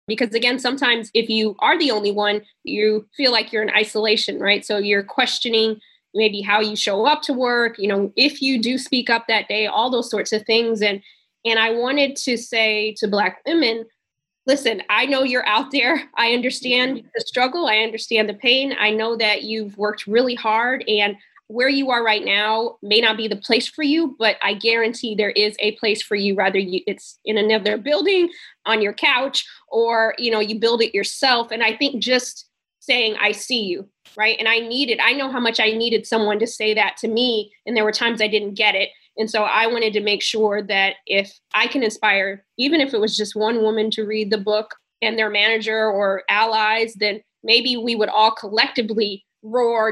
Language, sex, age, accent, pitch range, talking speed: English, female, 20-39, American, 210-240 Hz, 210 wpm